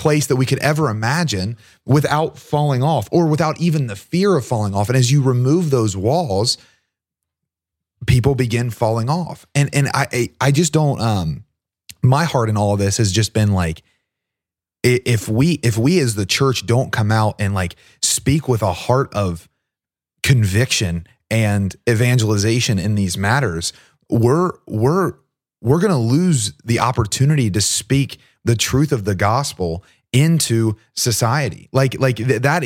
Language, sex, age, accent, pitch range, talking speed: English, male, 30-49, American, 110-145 Hz, 165 wpm